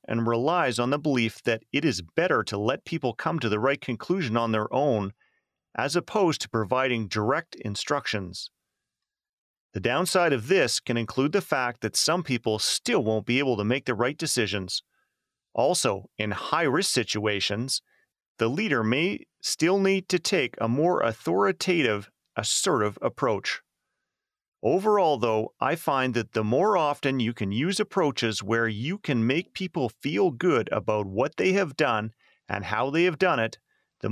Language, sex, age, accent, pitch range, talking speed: English, male, 40-59, American, 110-170 Hz, 165 wpm